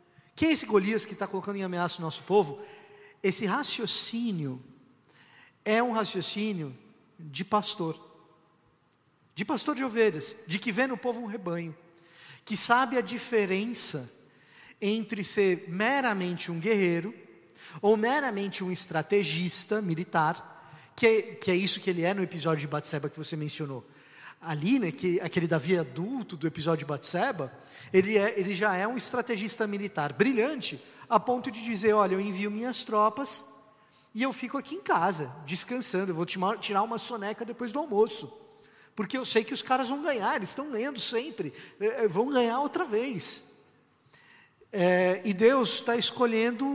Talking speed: 155 wpm